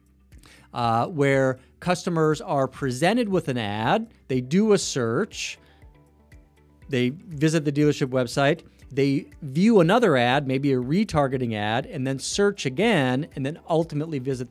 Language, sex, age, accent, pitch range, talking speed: English, male, 40-59, American, 130-165 Hz, 135 wpm